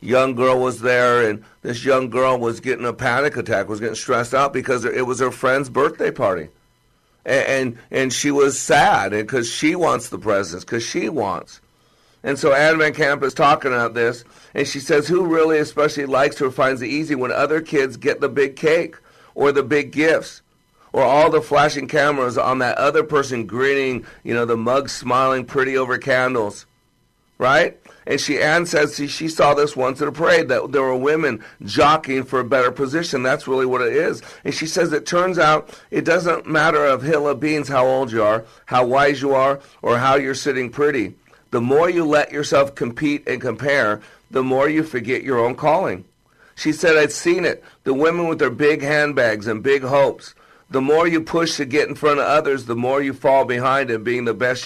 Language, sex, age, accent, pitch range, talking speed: English, male, 50-69, American, 125-150 Hz, 205 wpm